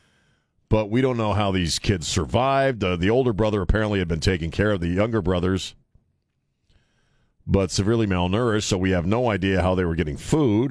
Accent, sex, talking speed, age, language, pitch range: American, male, 190 wpm, 40-59, English, 80-105 Hz